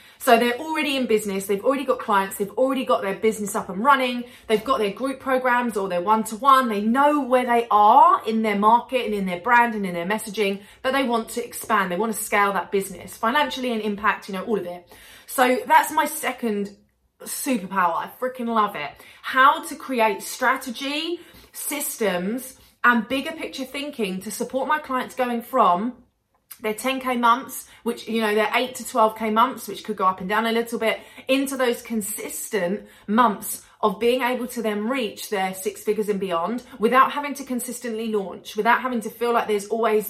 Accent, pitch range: British, 210-265 Hz